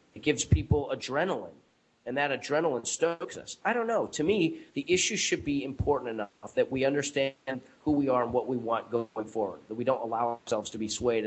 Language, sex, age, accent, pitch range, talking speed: English, male, 30-49, American, 125-155 Hz, 215 wpm